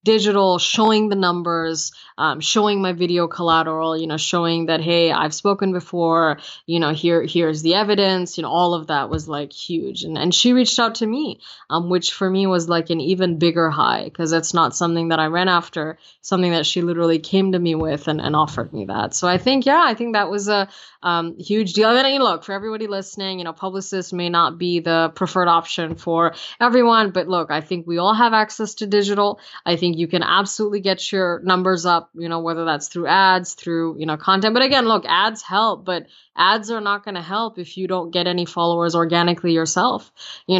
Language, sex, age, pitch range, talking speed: English, female, 20-39, 165-195 Hz, 220 wpm